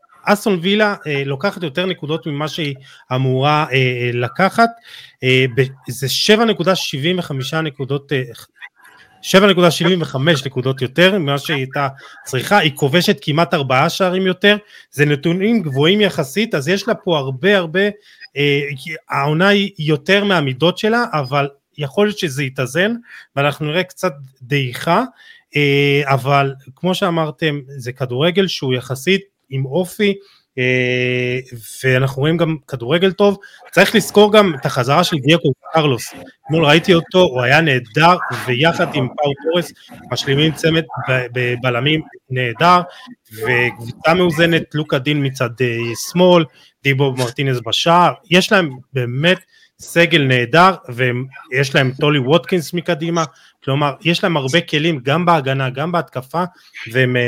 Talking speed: 130 wpm